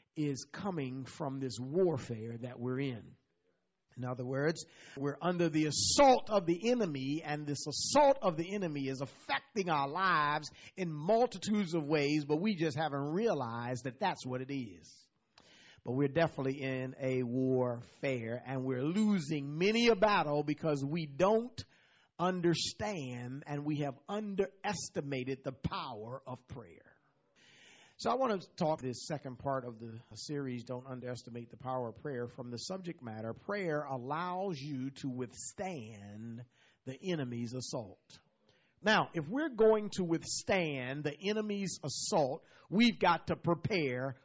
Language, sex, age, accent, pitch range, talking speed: English, male, 40-59, American, 130-200 Hz, 145 wpm